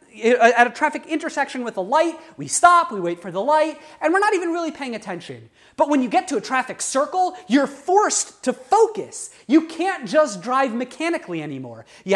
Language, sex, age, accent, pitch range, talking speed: English, male, 30-49, American, 215-305 Hz, 195 wpm